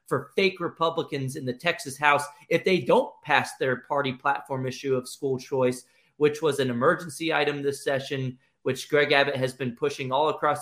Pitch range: 130-150 Hz